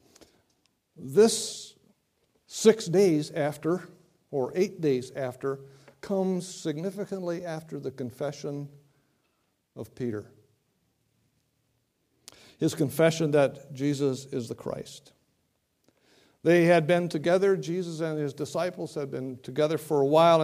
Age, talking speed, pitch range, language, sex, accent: 60-79, 105 wpm, 135-185 Hz, English, male, American